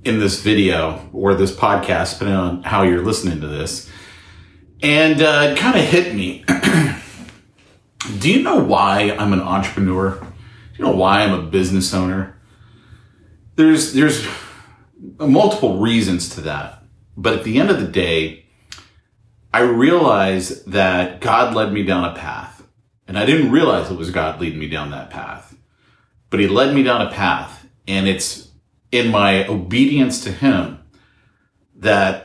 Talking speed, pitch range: 155 wpm, 90-115 Hz